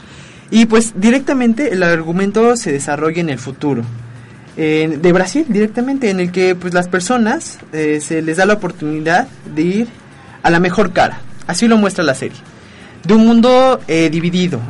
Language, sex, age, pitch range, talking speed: Spanish, male, 20-39, 150-205 Hz, 170 wpm